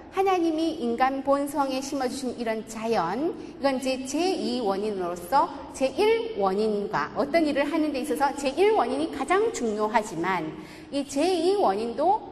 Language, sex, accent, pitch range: Korean, female, native, 230-330 Hz